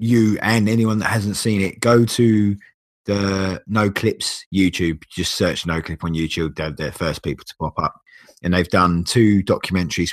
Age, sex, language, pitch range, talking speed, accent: 30-49, male, English, 85-100 Hz, 185 wpm, British